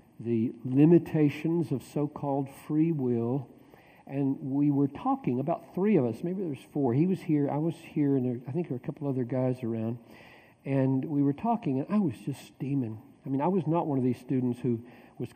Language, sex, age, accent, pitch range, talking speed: English, male, 60-79, American, 125-165 Hz, 210 wpm